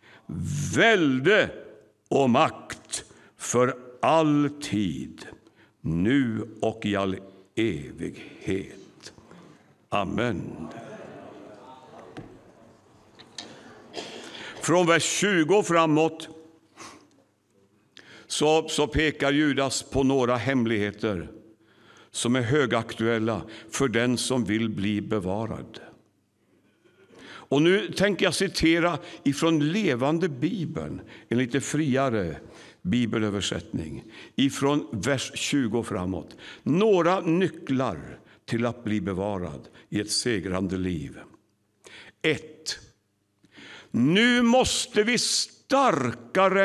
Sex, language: male, English